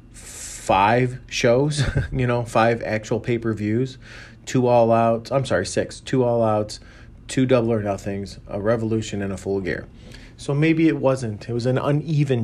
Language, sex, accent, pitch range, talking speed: English, male, American, 105-120 Hz, 175 wpm